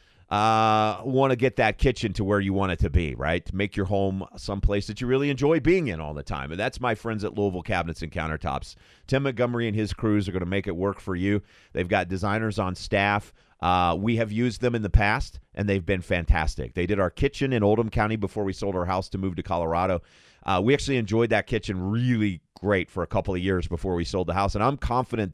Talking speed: 245 wpm